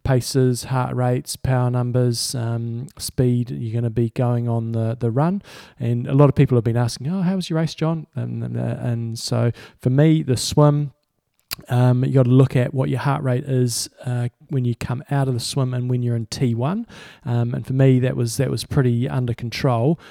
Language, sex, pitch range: English, male, 120-140 Hz